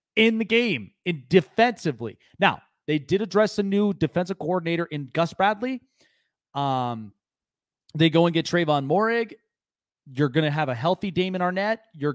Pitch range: 140-185 Hz